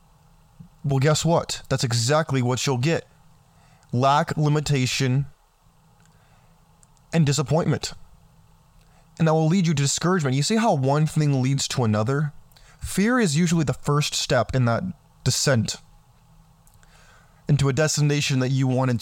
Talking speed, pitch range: 135 wpm, 130-155 Hz